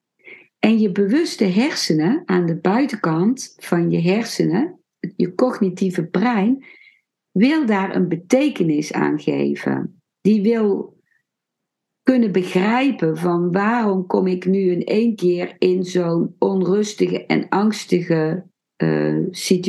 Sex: female